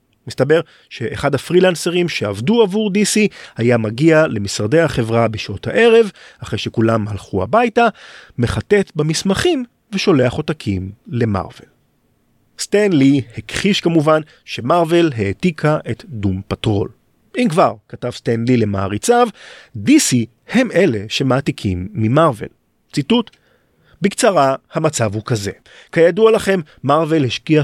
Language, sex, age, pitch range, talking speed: Hebrew, male, 40-59, 115-195 Hz, 105 wpm